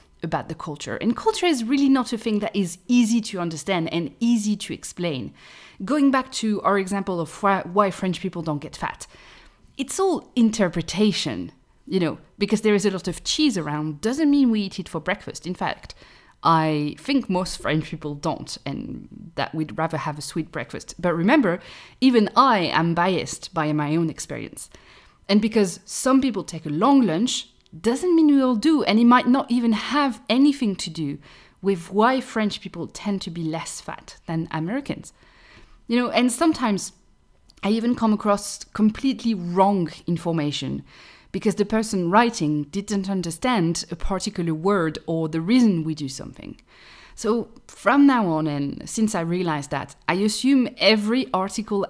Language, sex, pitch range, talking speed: English, female, 165-230 Hz, 170 wpm